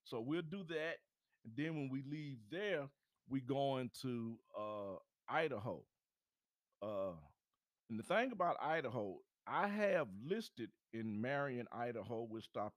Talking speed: 135 wpm